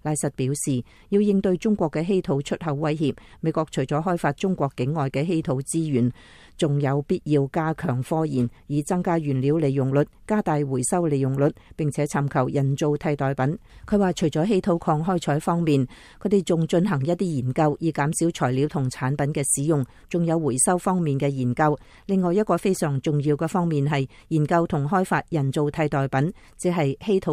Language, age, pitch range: English, 40-59, 140-175 Hz